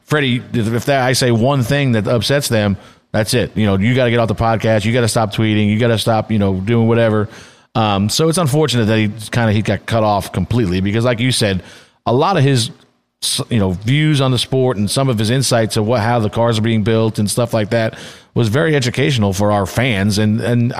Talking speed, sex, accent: 250 wpm, male, American